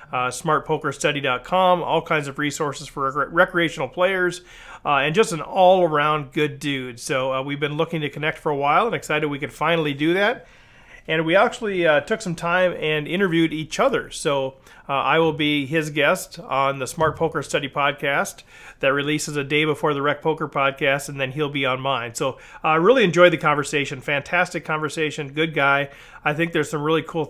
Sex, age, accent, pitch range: male, 40-59, American, 140-170 Hz